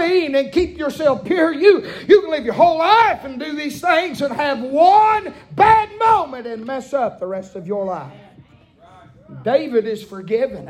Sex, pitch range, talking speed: male, 175-255 Hz, 175 wpm